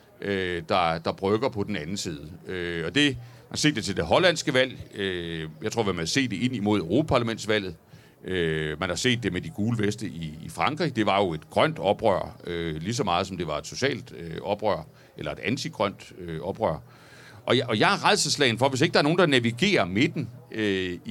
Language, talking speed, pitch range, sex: Danish, 210 wpm, 105-150 Hz, male